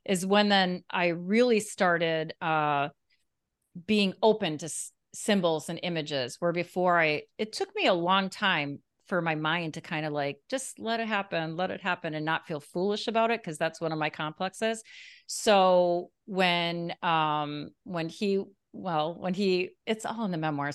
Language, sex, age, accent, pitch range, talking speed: English, female, 40-59, American, 155-195 Hz, 180 wpm